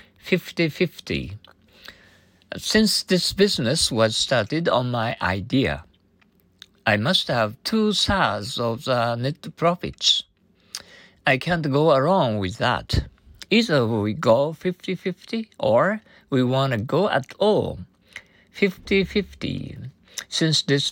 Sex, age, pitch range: male, 60-79, 110-180 Hz